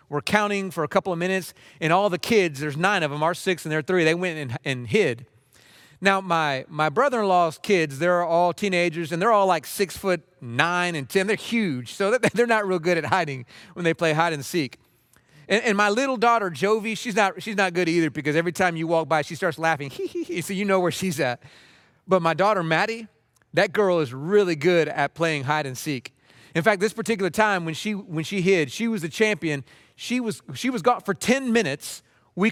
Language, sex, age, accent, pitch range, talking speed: English, male, 30-49, American, 160-215 Hz, 215 wpm